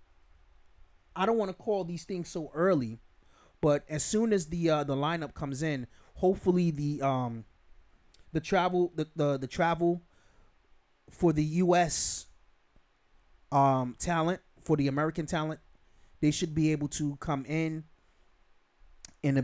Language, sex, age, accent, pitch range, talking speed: English, male, 30-49, American, 130-160 Hz, 140 wpm